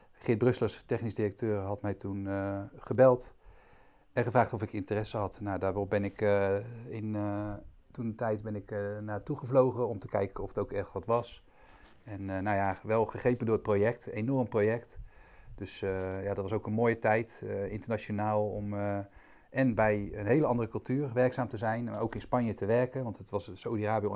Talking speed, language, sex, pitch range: 195 wpm, Dutch, male, 100-120 Hz